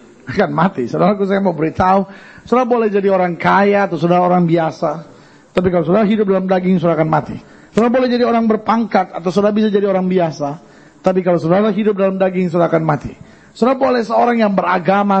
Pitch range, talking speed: 185-225 Hz, 195 wpm